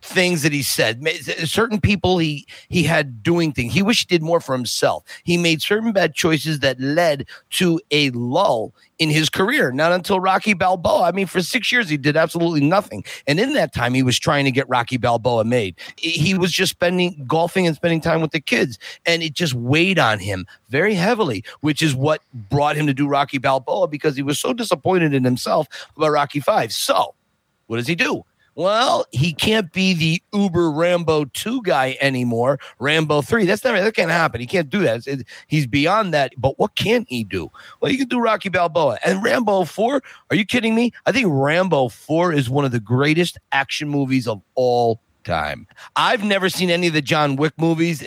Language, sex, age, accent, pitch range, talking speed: English, male, 40-59, American, 135-175 Hz, 205 wpm